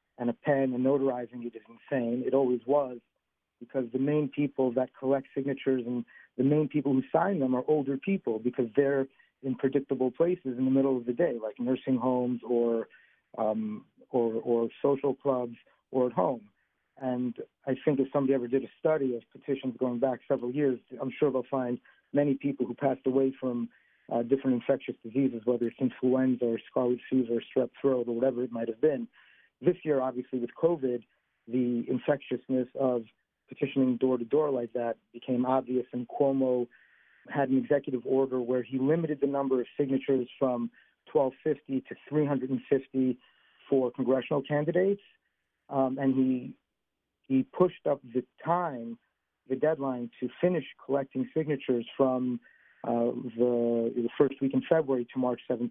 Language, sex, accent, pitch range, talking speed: English, male, American, 125-140 Hz, 165 wpm